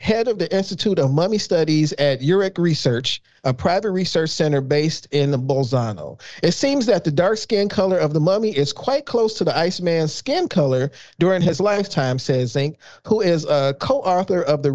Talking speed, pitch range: 185 wpm, 135-190 Hz